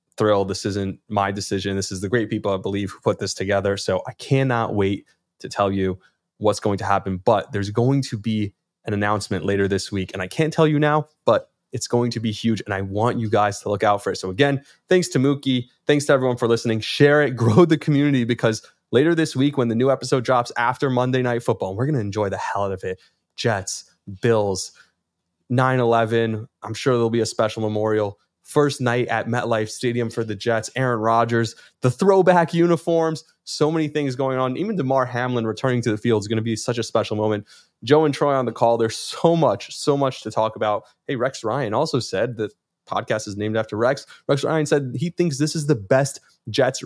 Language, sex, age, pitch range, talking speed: English, male, 20-39, 105-135 Hz, 220 wpm